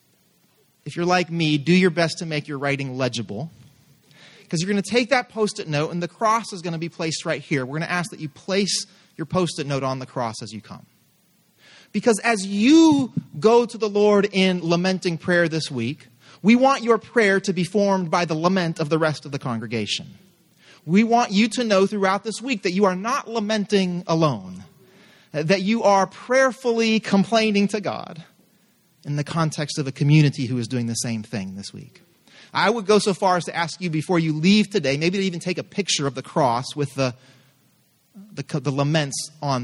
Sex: male